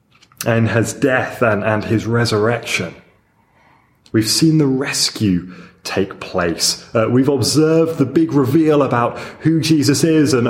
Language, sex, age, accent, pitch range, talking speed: English, male, 30-49, British, 110-140 Hz, 135 wpm